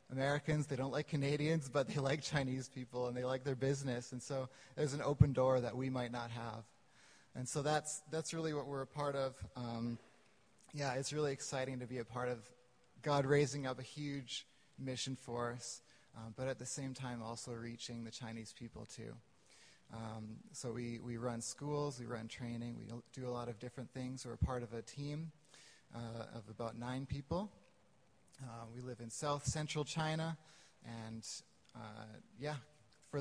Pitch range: 120-145 Hz